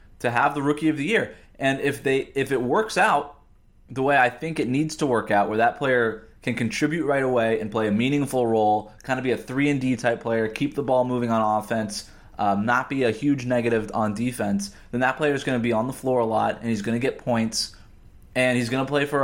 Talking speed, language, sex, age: 250 wpm, English, male, 20-39